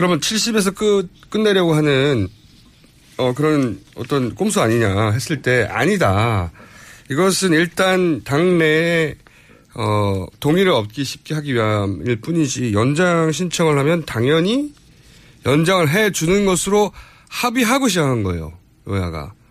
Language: Korean